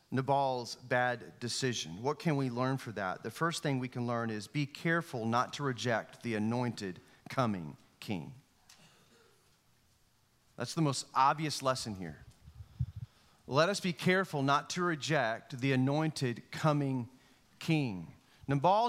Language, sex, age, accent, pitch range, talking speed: English, male, 40-59, American, 130-185 Hz, 135 wpm